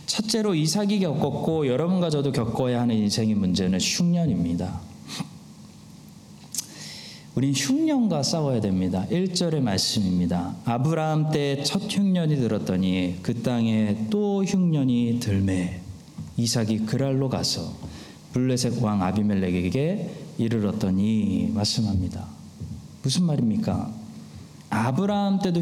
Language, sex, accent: Korean, male, native